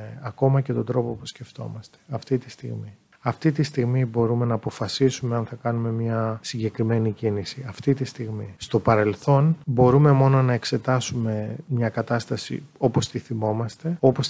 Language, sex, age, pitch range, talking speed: Greek, male, 30-49, 110-130 Hz, 150 wpm